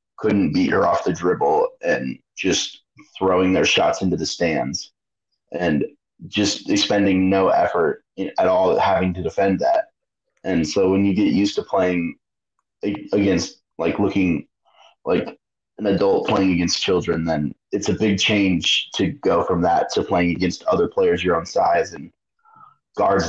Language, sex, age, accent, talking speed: English, male, 30-49, American, 155 wpm